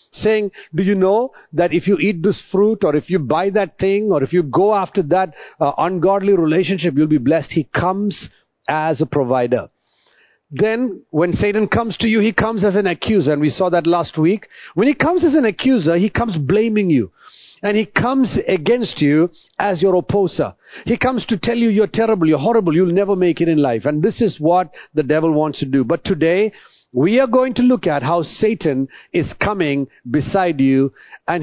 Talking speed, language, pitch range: 205 wpm, English, 155-215 Hz